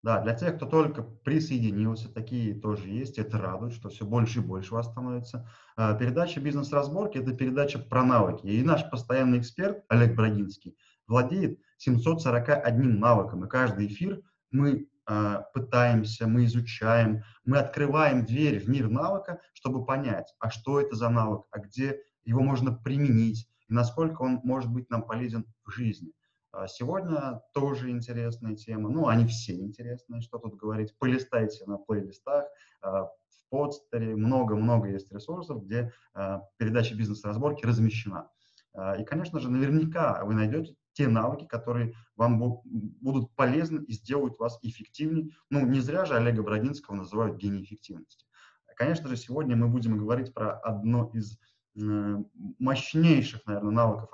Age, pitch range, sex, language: 30-49, 110-135 Hz, male, Russian